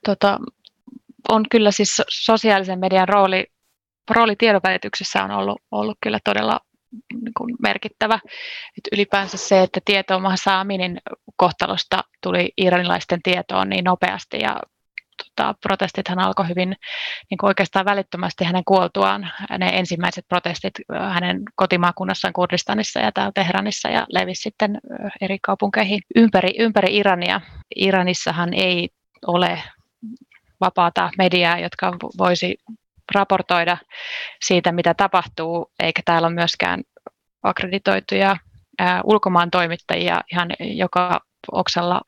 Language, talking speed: Finnish, 110 wpm